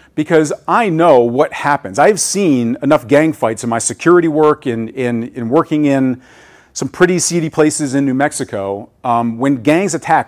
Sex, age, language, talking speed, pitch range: male, 40-59, English, 165 wpm, 120-160 Hz